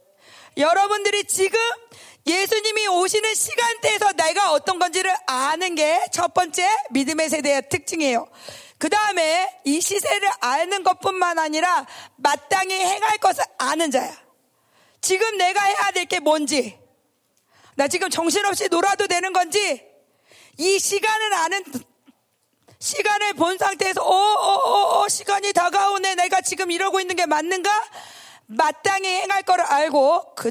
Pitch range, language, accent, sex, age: 310-395 Hz, Korean, native, female, 40-59